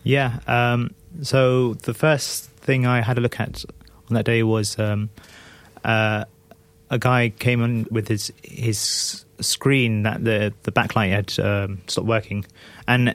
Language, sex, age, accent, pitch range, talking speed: English, male, 20-39, British, 105-120 Hz, 155 wpm